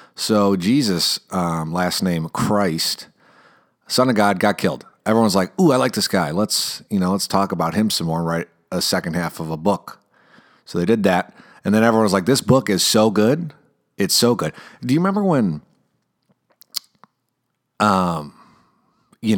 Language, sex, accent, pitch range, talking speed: English, male, American, 85-110 Hz, 175 wpm